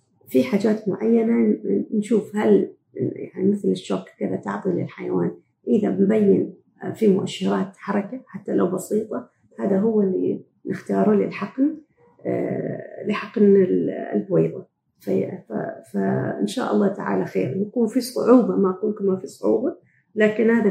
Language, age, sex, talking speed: Arabic, 40-59, female, 115 wpm